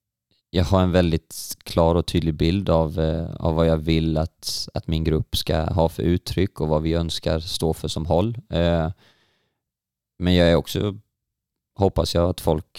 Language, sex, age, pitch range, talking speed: Danish, male, 20-39, 80-90 Hz, 185 wpm